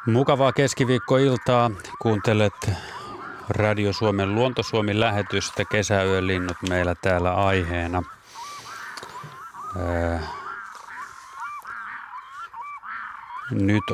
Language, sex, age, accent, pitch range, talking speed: Finnish, male, 30-49, native, 90-115 Hz, 55 wpm